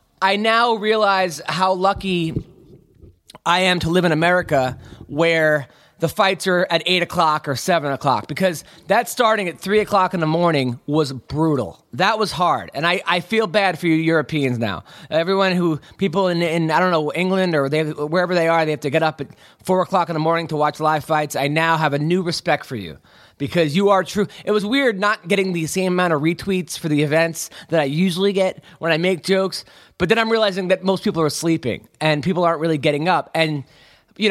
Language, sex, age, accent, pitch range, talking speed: English, male, 20-39, American, 155-200 Hz, 215 wpm